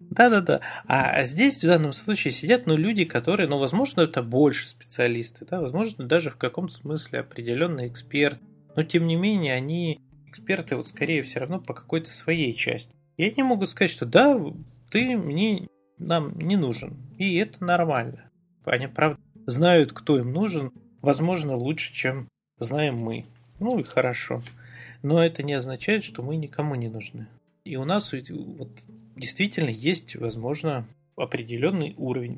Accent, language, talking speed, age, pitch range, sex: native, Russian, 155 wpm, 30-49, 125-175 Hz, male